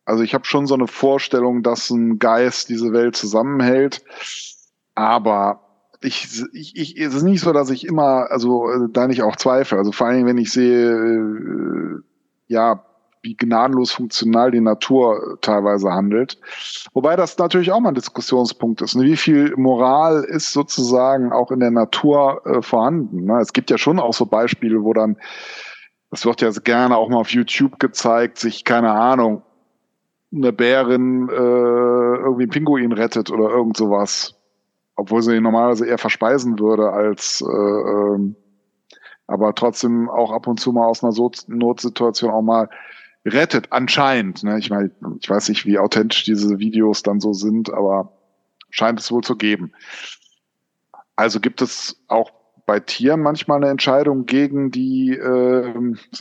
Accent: German